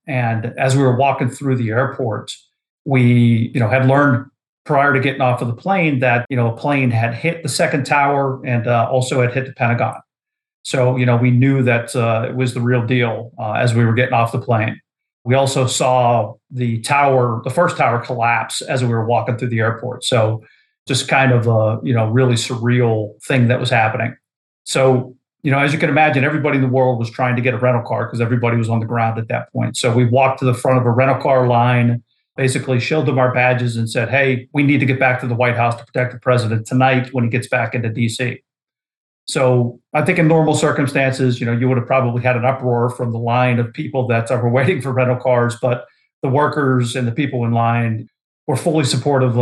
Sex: male